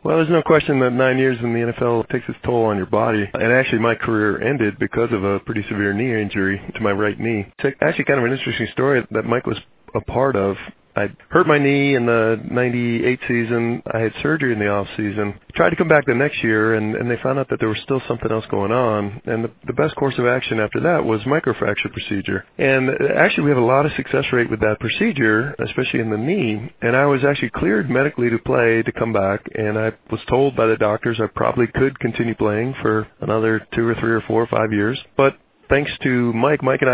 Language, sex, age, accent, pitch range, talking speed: English, male, 40-59, American, 110-130 Hz, 235 wpm